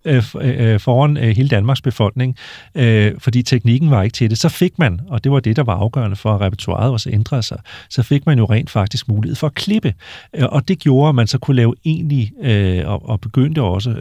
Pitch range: 105-135 Hz